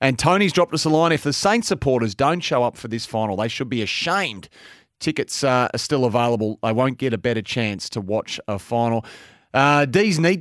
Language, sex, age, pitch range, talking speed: English, male, 30-49, 125-175 Hz, 220 wpm